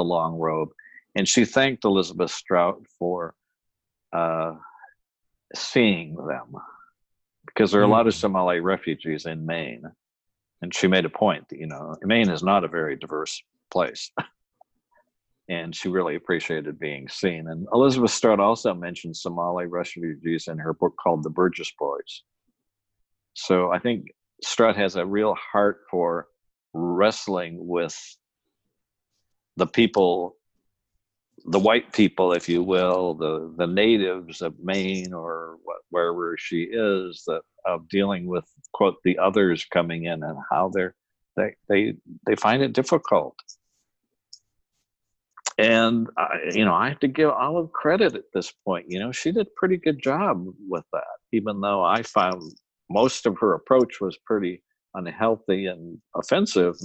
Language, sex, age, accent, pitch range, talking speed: English, male, 50-69, American, 85-115 Hz, 150 wpm